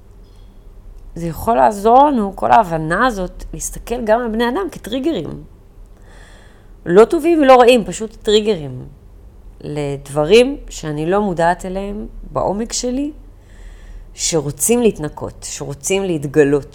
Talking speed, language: 110 wpm, Hebrew